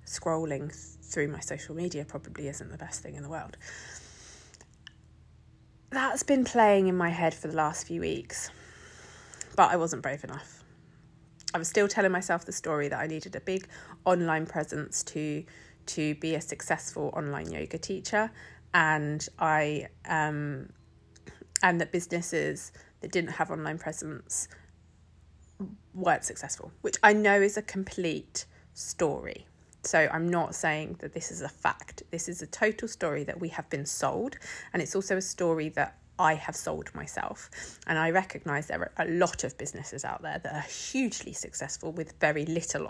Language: English